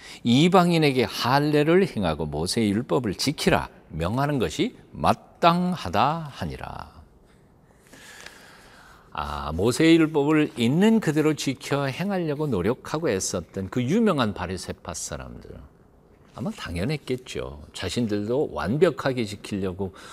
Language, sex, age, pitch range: Korean, male, 50-69, 90-150 Hz